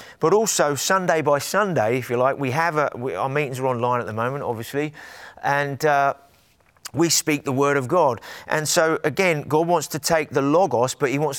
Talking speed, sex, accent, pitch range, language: 210 wpm, male, British, 130-165 Hz, English